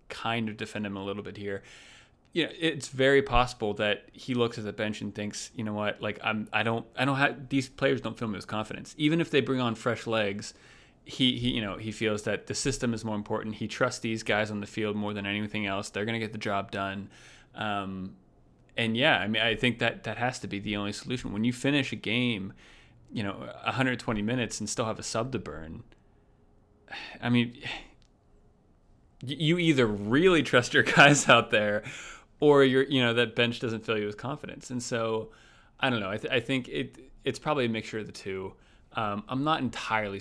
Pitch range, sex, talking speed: 105-125 Hz, male, 220 wpm